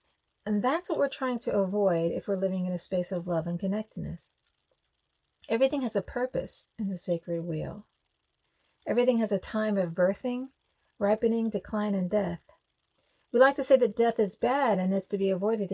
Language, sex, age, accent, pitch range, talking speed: English, female, 40-59, American, 190-265 Hz, 185 wpm